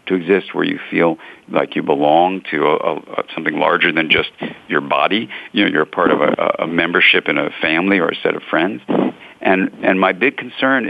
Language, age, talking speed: English, 50-69, 215 wpm